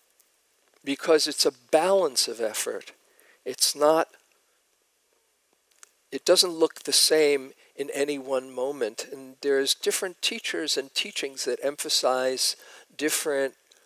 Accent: American